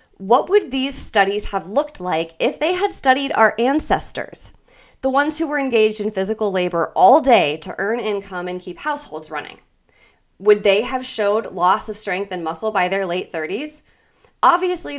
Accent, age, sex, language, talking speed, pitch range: American, 20-39, female, English, 175 wpm, 180-240 Hz